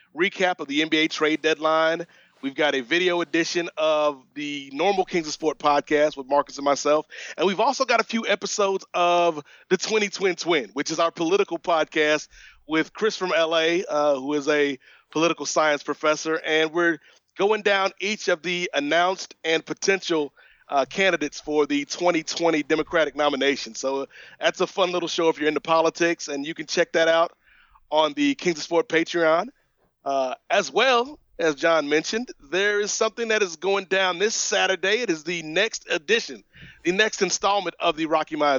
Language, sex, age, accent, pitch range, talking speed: English, male, 30-49, American, 155-195 Hz, 180 wpm